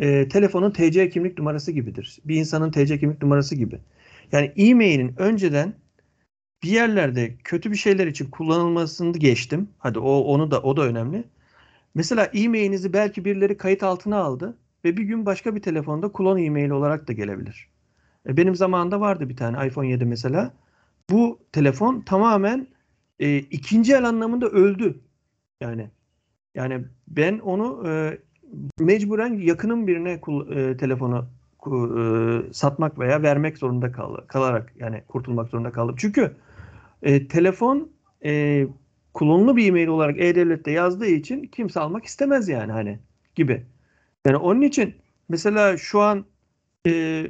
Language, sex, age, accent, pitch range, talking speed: Turkish, male, 50-69, native, 130-195 Hz, 140 wpm